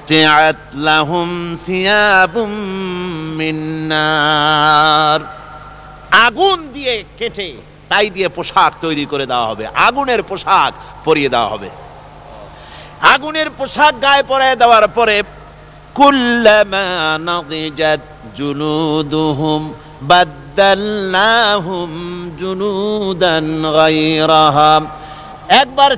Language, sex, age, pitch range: Bengali, male, 50-69, 155-210 Hz